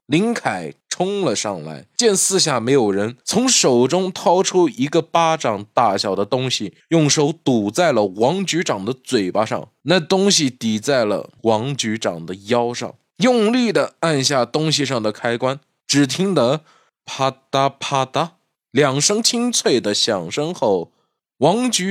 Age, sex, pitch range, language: 20-39, male, 115-190 Hz, Chinese